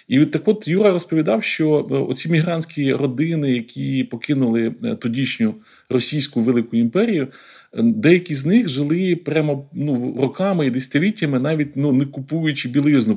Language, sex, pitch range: Ukrainian, male, 125-155 Hz